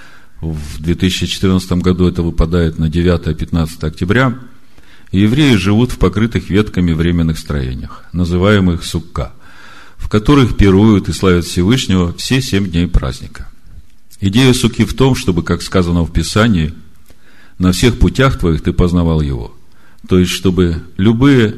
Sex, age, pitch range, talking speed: male, 40-59, 85-110 Hz, 130 wpm